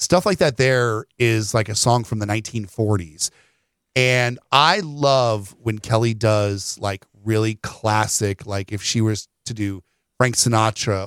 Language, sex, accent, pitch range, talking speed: English, male, American, 105-130 Hz, 150 wpm